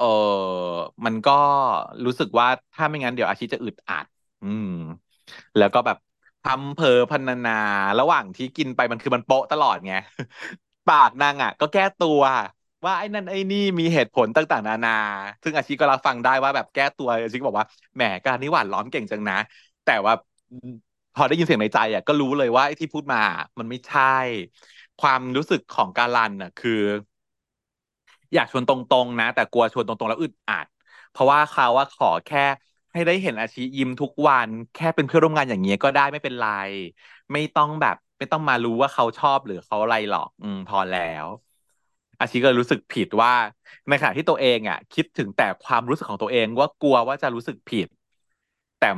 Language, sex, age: Thai, male, 20-39